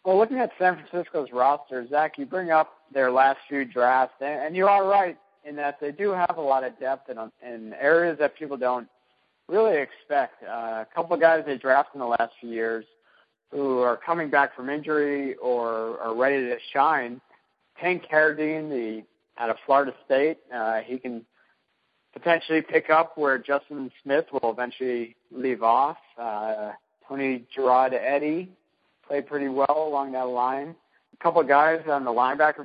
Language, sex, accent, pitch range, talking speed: English, male, American, 125-155 Hz, 170 wpm